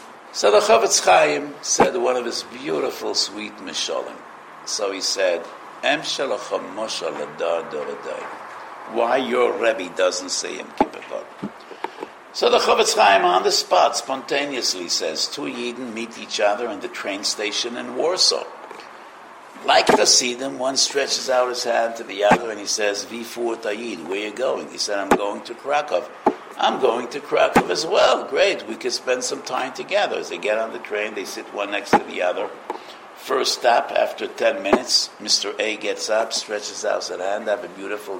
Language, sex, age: English, male, 60-79